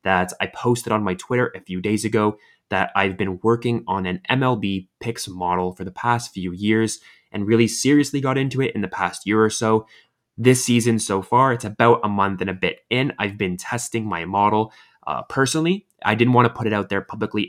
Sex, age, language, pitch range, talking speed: male, 20-39, English, 100-120 Hz, 220 wpm